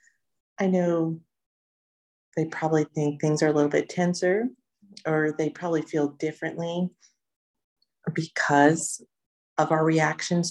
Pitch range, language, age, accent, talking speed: 150-175 Hz, English, 40-59, American, 115 wpm